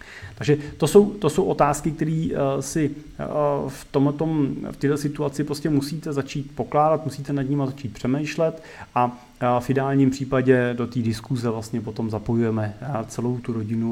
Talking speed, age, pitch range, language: 150 wpm, 30-49, 120-145 Hz, Czech